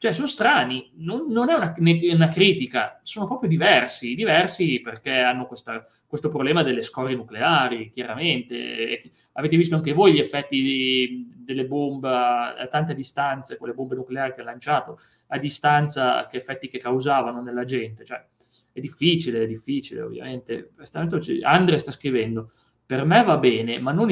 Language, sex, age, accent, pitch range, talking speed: Italian, male, 30-49, native, 125-160 Hz, 160 wpm